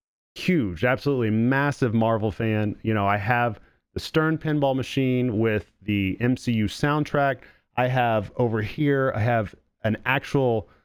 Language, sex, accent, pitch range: English, male, American, 100-130 Hz